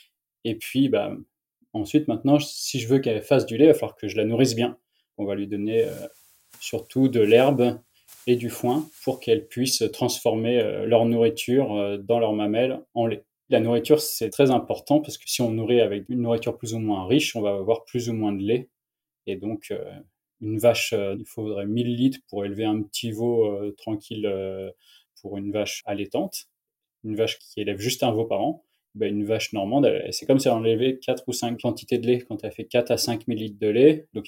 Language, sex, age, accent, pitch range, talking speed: French, male, 20-39, French, 105-130 Hz, 220 wpm